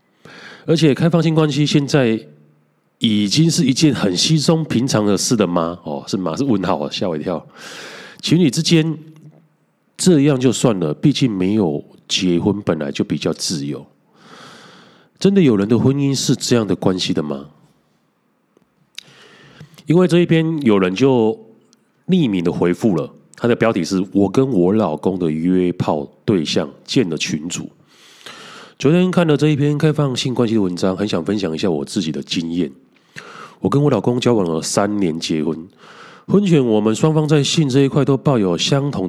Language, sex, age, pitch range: Chinese, male, 30-49, 95-155 Hz